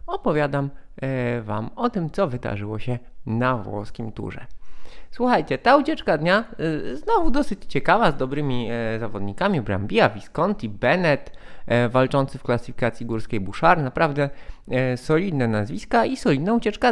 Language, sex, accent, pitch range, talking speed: Polish, male, native, 120-175 Hz, 120 wpm